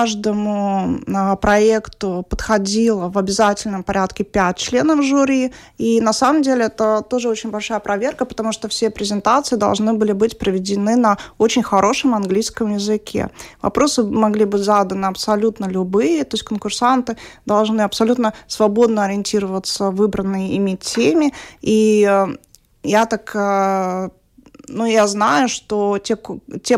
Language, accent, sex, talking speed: Russian, native, female, 125 wpm